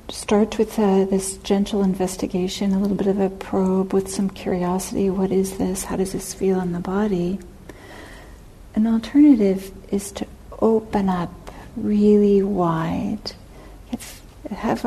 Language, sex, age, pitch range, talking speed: English, female, 60-79, 185-225 Hz, 135 wpm